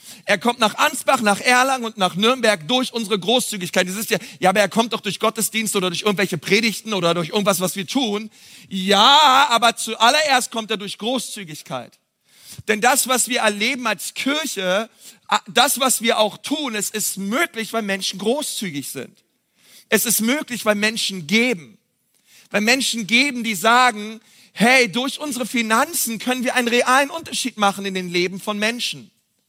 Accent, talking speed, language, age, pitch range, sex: German, 170 wpm, German, 40-59, 205-250 Hz, male